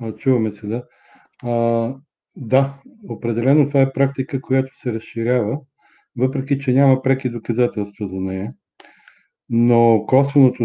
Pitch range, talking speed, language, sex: 115-130 Hz, 120 wpm, Bulgarian, male